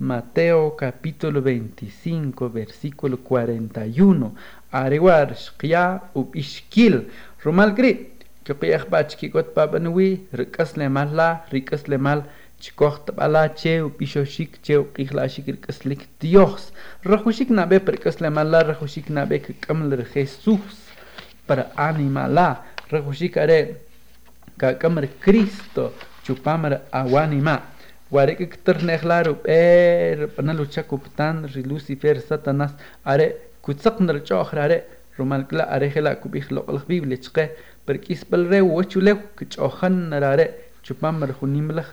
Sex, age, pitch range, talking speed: male, 50-69, 140-175 Hz, 100 wpm